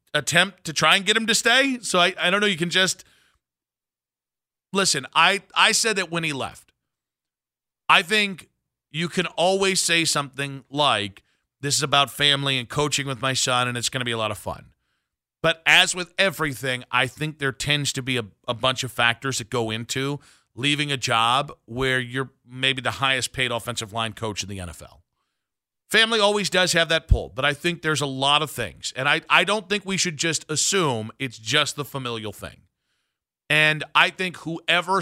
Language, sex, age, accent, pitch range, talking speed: English, male, 40-59, American, 125-165 Hz, 195 wpm